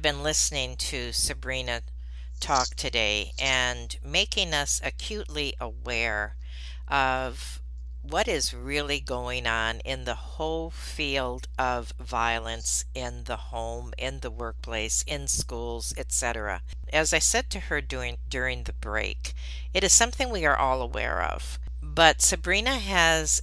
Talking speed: 135 wpm